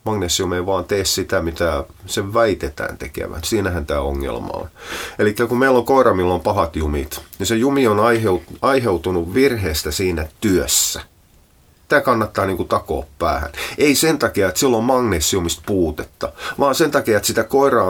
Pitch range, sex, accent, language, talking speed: 85-115 Hz, male, native, Finnish, 165 wpm